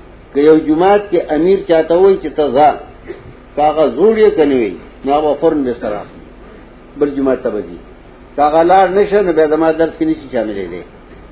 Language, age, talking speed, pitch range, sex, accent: English, 60-79, 160 wpm, 150-190 Hz, male, Indian